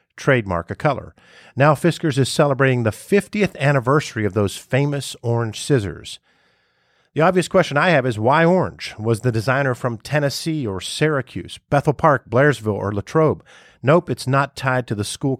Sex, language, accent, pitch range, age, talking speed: male, English, American, 110-145 Hz, 50-69, 165 wpm